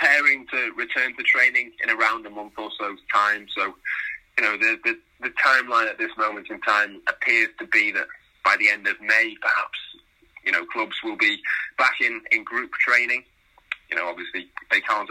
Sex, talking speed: male, 195 wpm